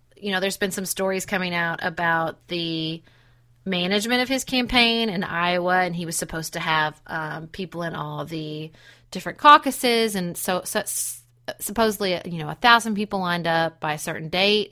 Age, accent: 30-49, American